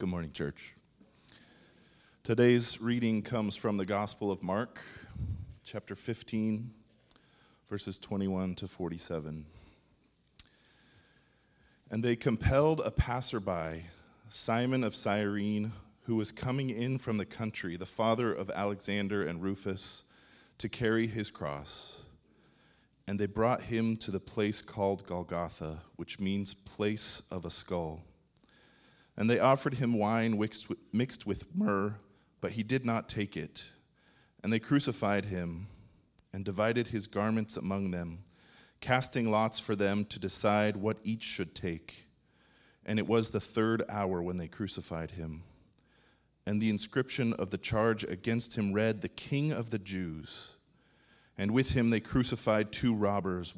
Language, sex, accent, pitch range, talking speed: English, male, American, 95-115 Hz, 135 wpm